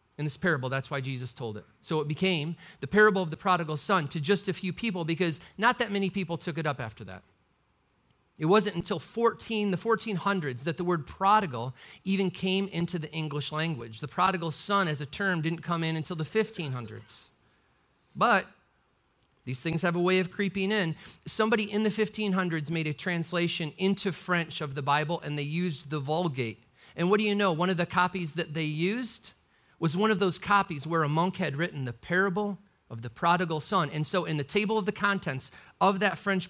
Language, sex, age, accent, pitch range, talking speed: English, male, 40-59, American, 150-195 Hz, 205 wpm